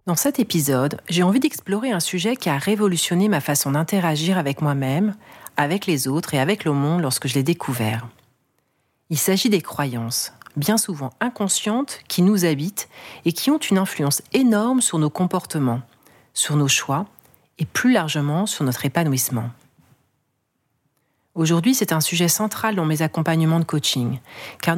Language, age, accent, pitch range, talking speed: French, 40-59, French, 140-190 Hz, 160 wpm